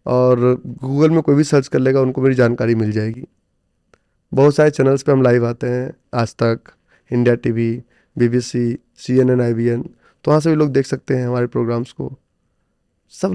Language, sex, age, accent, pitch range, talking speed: English, male, 20-39, Indian, 125-165 Hz, 180 wpm